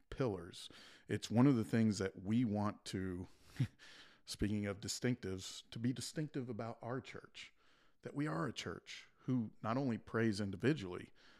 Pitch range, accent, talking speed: 95-120 Hz, American, 155 wpm